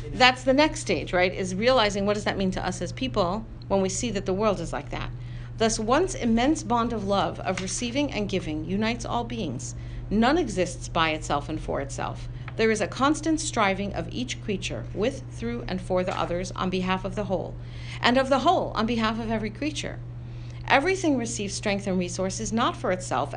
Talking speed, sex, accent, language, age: 205 wpm, female, American, English, 50-69